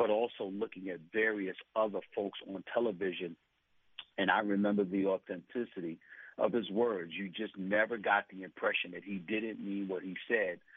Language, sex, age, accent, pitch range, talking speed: English, male, 50-69, American, 95-115 Hz, 165 wpm